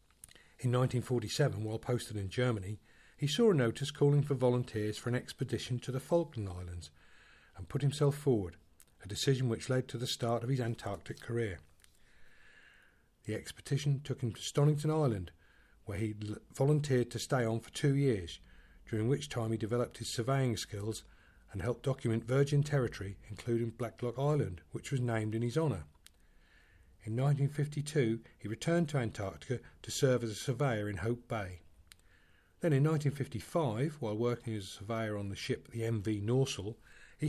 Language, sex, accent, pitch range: English, male, British, 105-140 Hz